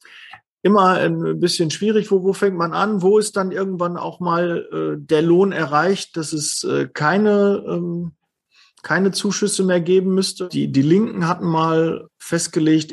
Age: 40-59